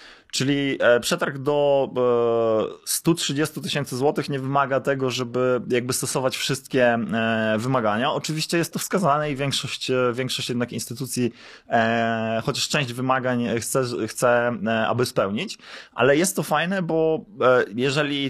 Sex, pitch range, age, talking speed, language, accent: male, 125-155 Hz, 20-39, 120 wpm, Polish, native